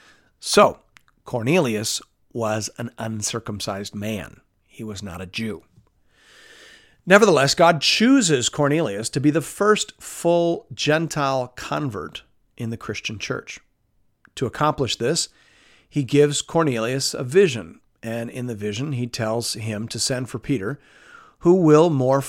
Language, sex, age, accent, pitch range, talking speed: English, male, 50-69, American, 115-160 Hz, 130 wpm